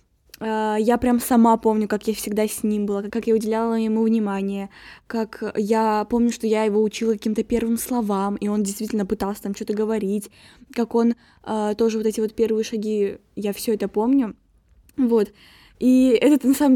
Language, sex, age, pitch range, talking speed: Russian, female, 10-29, 215-245 Hz, 175 wpm